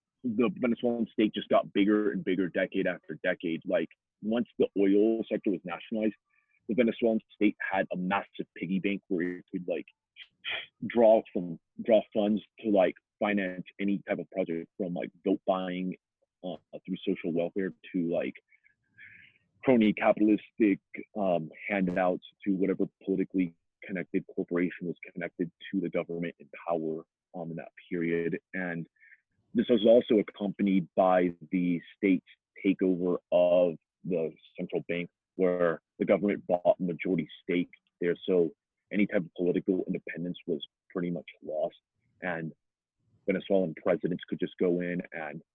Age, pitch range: 30-49, 85-100 Hz